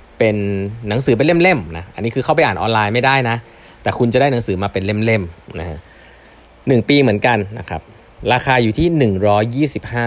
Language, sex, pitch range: Thai, male, 95-130 Hz